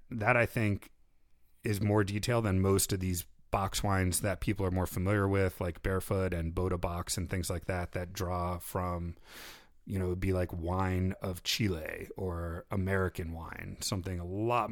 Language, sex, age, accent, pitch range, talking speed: English, male, 30-49, American, 95-115 Hz, 180 wpm